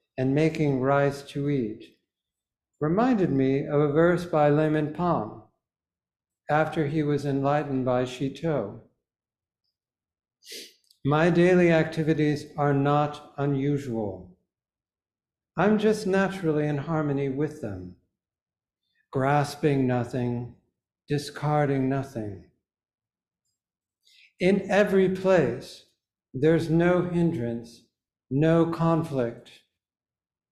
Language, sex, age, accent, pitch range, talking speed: English, male, 60-79, American, 115-160 Hz, 85 wpm